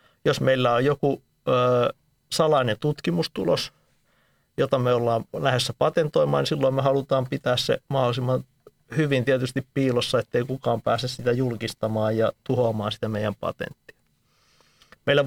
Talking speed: 130 wpm